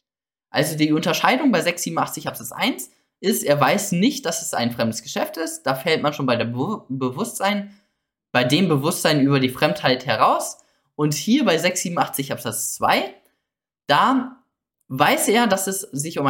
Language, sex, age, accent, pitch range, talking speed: German, male, 10-29, German, 120-170 Hz, 155 wpm